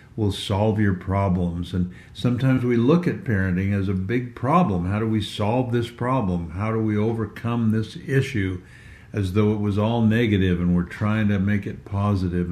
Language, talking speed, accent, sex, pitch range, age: English, 185 wpm, American, male, 100-125 Hz, 60-79